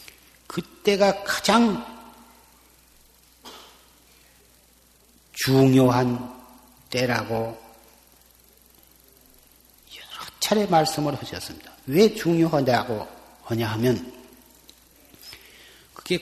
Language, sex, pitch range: Korean, male, 125-160 Hz